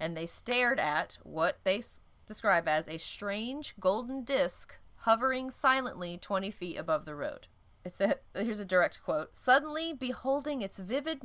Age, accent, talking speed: 30-49, American, 155 wpm